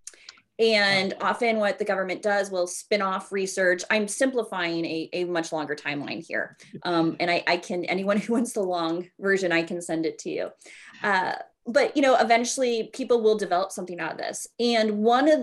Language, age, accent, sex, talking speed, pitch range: English, 30-49, American, female, 195 wpm, 180-230 Hz